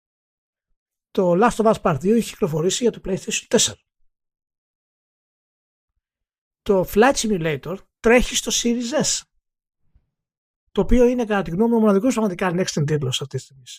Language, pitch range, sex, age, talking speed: Greek, 140-205 Hz, male, 60-79, 150 wpm